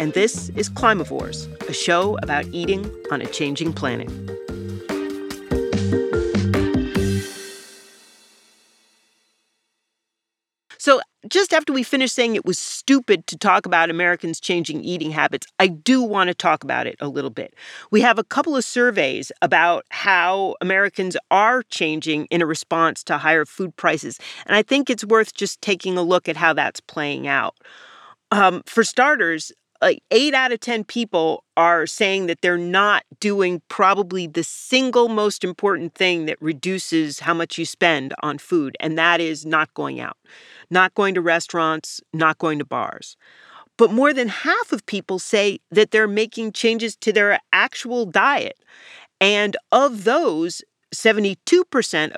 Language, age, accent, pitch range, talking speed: English, 40-59, American, 155-220 Hz, 150 wpm